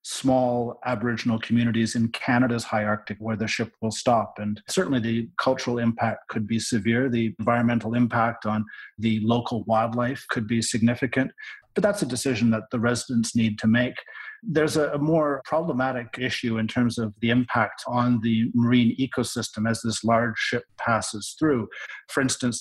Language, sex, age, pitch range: English, male, 40-59, 115-125 Hz